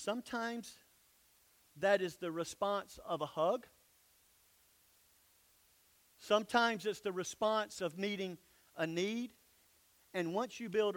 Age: 50-69